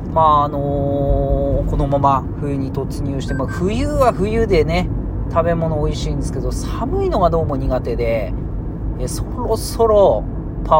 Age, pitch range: 40-59, 110-150 Hz